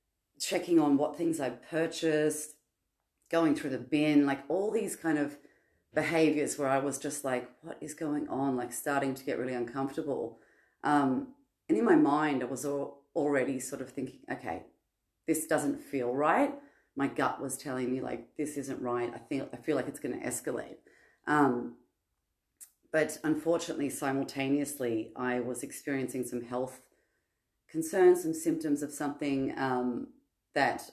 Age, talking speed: 30-49, 150 wpm